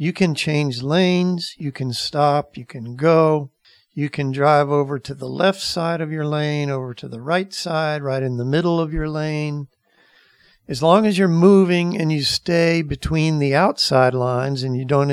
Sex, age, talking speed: male, 60-79, 190 wpm